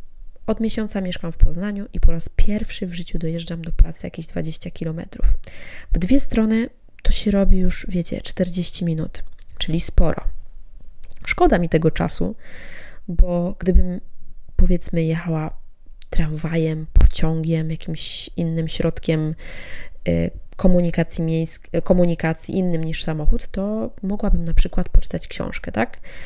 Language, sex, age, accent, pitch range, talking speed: Polish, female, 20-39, native, 160-190 Hz, 125 wpm